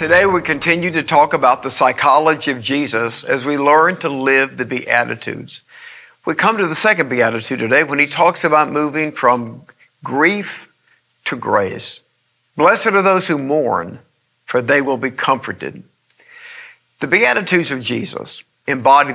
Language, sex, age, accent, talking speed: English, male, 50-69, American, 150 wpm